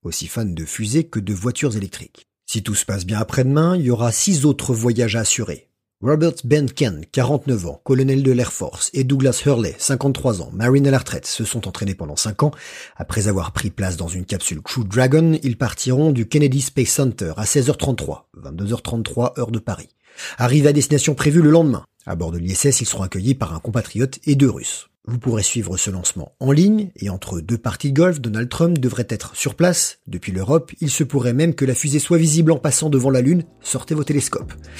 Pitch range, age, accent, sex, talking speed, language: 95-140 Hz, 40-59, French, male, 210 wpm, French